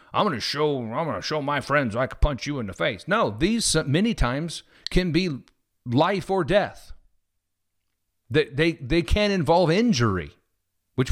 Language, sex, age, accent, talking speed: English, male, 50-69, American, 180 wpm